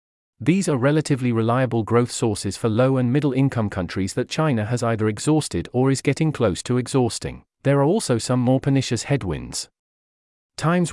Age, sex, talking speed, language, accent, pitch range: 40-59, male, 165 wpm, English, British, 110-140 Hz